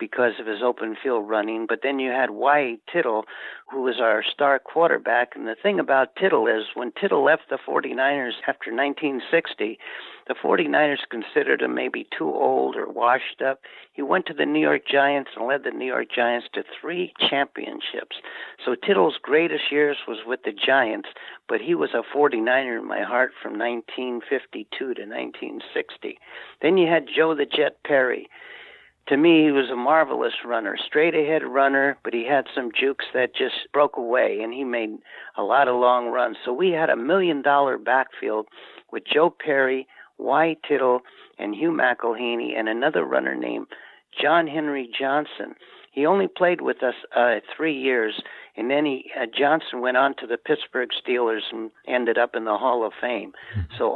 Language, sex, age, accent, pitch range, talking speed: English, male, 60-79, American, 120-160 Hz, 175 wpm